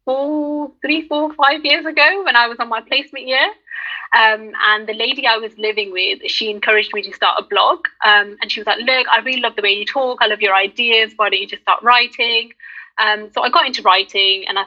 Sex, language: female, English